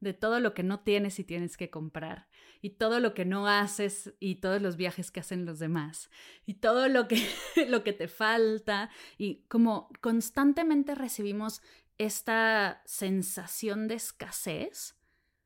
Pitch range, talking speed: 195-240 Hz, 150 wpm